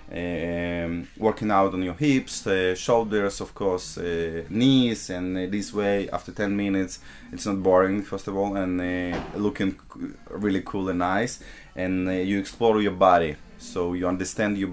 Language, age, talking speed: English, 20-39, 175 wpm